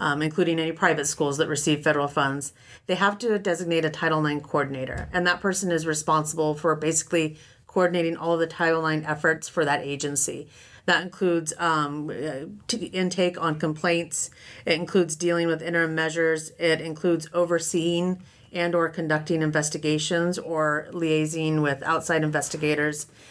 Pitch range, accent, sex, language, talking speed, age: 150-170 Hz, American, female, English, 145 wpm, 30-49